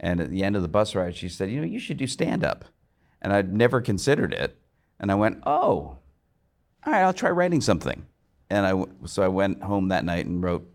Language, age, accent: English, 50-69, American